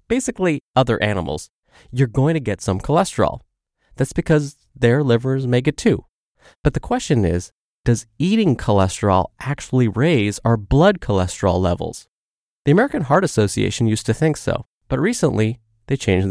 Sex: male